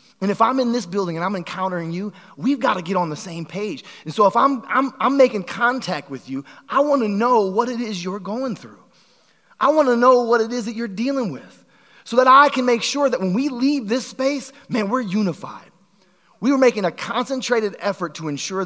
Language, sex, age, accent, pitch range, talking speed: English, male, 30-49, American, 150-230 Hz, 230 wpm